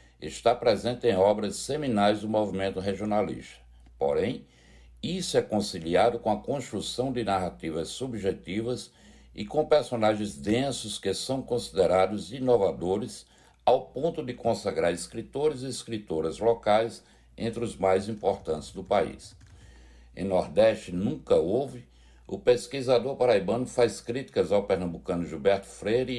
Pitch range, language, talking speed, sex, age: 85-115 Hz, Portuguese, 120 wpm, male, 60-79